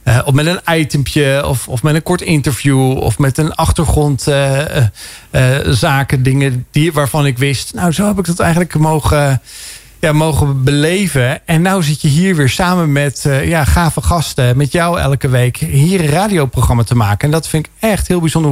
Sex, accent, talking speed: male, Dutch, 190 wpm